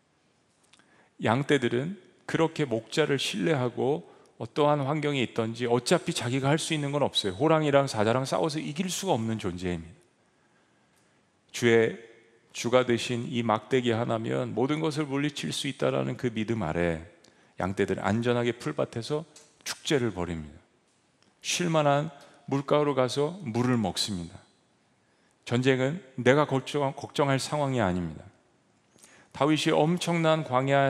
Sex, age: male, 40-59